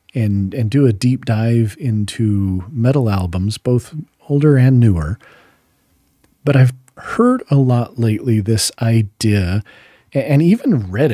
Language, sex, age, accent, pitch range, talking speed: English, male, 40-59, American, 105-140 Hz, 130 wpm